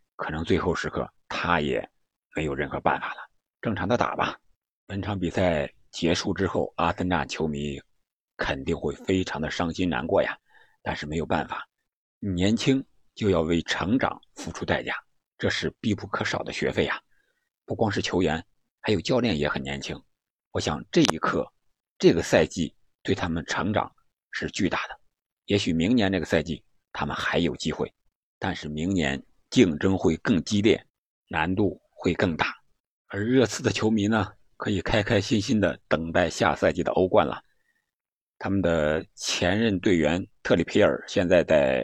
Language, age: Chinese, 50-69